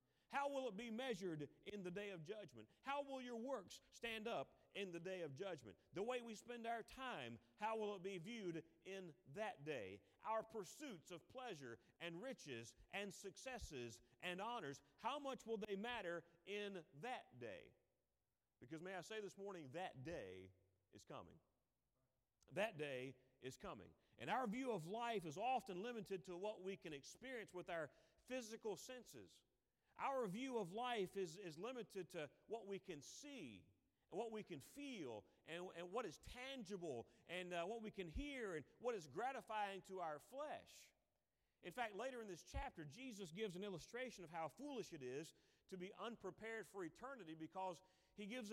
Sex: male